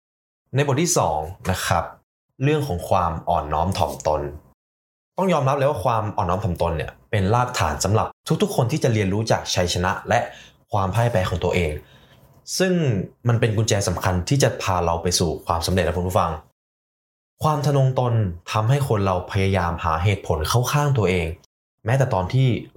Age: 20-39